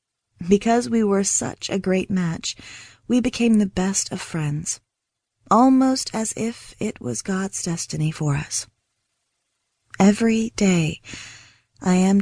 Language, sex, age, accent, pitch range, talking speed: English, female, 30-49, American, 155-210 Hz, 130 wpm